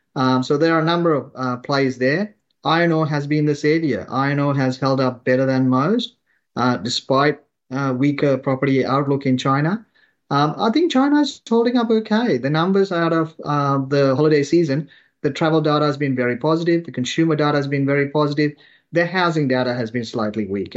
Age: 30-49